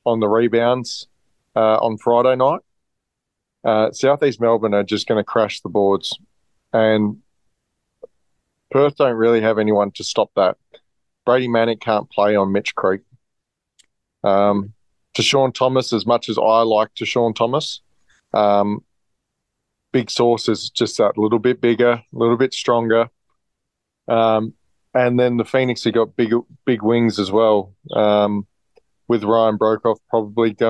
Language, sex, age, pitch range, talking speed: English, male, 20-39, 110-125 Hz, 145 wpm